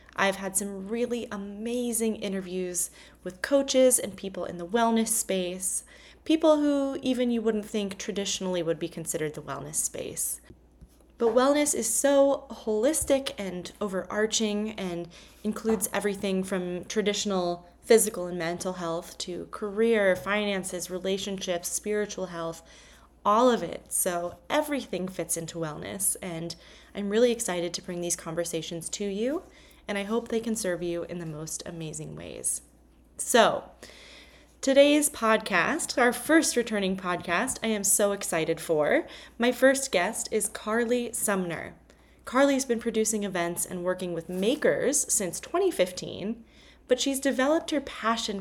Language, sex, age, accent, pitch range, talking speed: English, female, 20-39, American, 180-235 Hz, 140 wpm